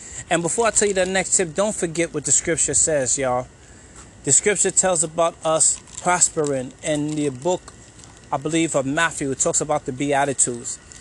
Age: 20-39